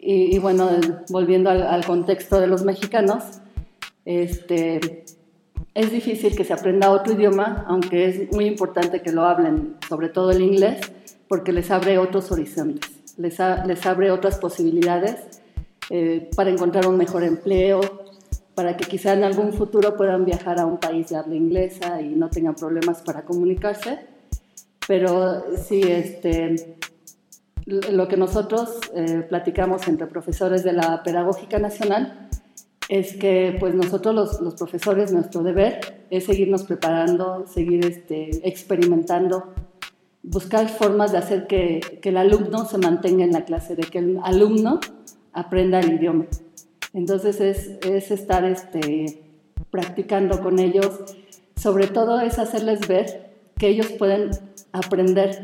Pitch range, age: 175-195 Hz, 40-59